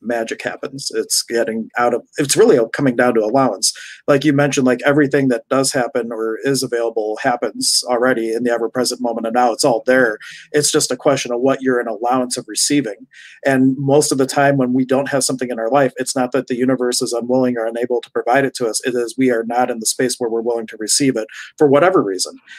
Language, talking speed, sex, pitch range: English, 235 wpm, male, 125-145 Hz